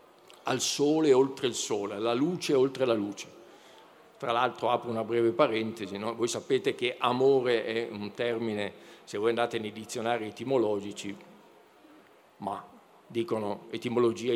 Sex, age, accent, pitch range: male, 50-69, native, 115-150 Hz